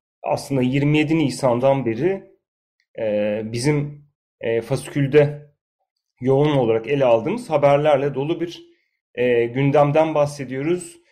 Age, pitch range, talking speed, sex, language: 30-49, 125-140 Hz, 80 wpm, male, Turkish